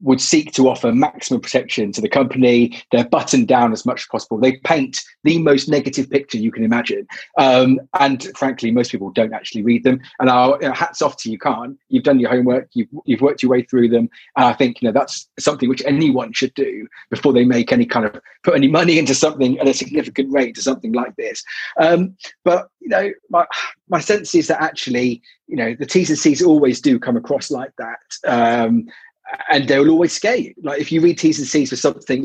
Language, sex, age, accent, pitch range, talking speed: English, male, 30-49, British, 125-175 Hz, 225 wpm